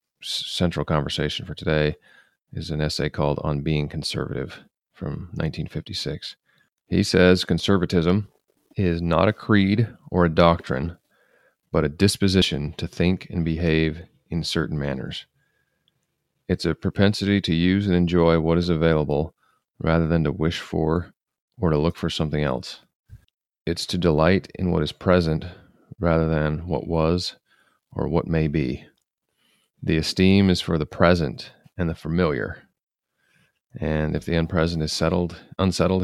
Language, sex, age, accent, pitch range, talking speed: English, male, 40-59, American, 80-90 Hz, 140 wpm